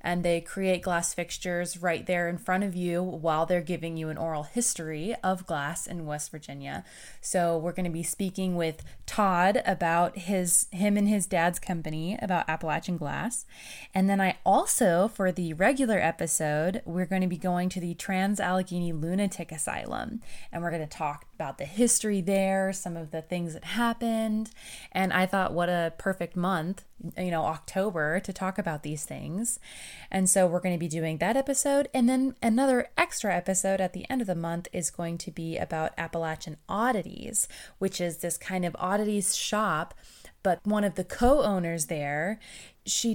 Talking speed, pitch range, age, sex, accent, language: 180 wpm, 170-200 Hz, 20-39, female, American, English